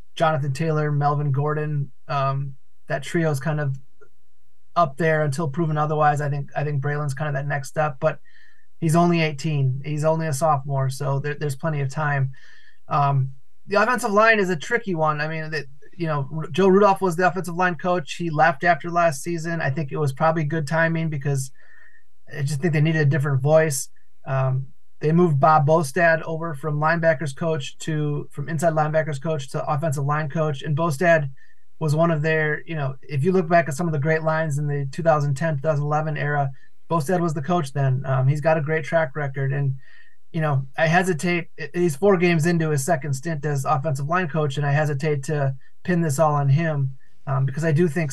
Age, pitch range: 20-39, 145-165 Hz